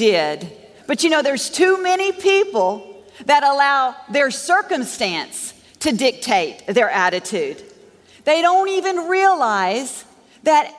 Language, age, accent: English, 50-69, American